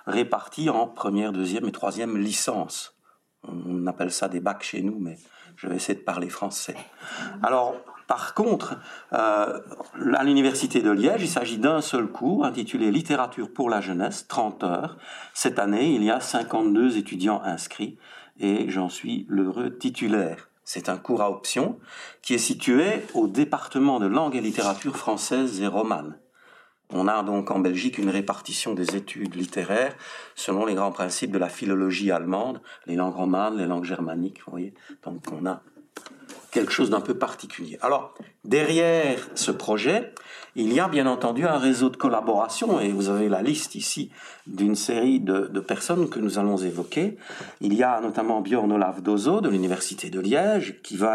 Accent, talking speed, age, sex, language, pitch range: French, 175 wpm, 50-69, male, French, 95-125 Hz